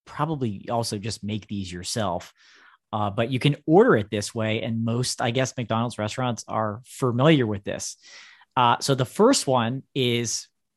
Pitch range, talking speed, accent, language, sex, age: 110-150 Hz, 165 wpm, American, English, male, 30-49